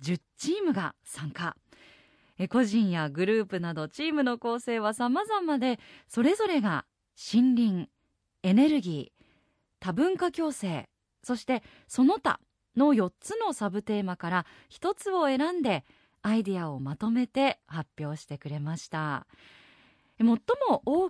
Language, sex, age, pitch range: Japanese, female, 20-39, 185-280 Hz